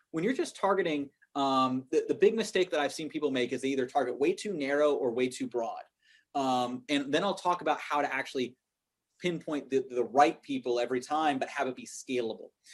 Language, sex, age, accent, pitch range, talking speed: English, male, 30-49, American, 135-190 Hz, 215 wpm